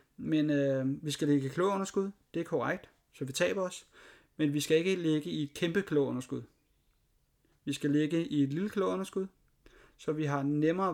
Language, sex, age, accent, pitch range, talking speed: Danish, male, 30-49, native, 140-185 Hz, 205 wpm